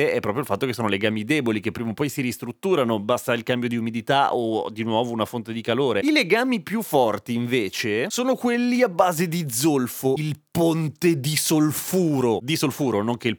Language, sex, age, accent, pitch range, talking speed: Italian, male, 30-49, native, 120-185 Hz, 205 wpm